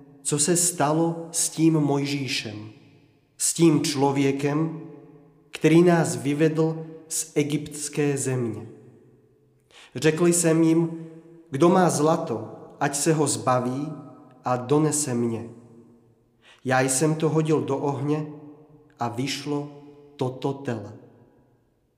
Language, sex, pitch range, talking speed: Czech, male, 130-155 Hz, 105 wpm